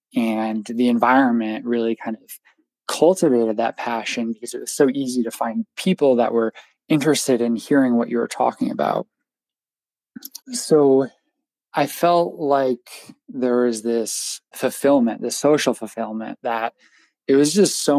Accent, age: American, 20-39